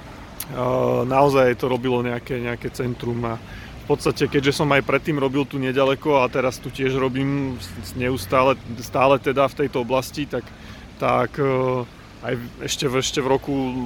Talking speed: 150 wpm